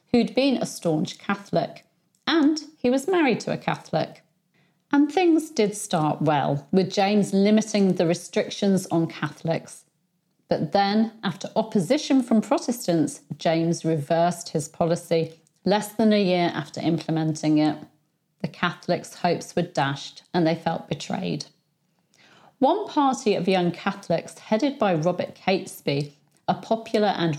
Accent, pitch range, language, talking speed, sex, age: British, 160-210 Hz, English, 135 wpm, female, 40-59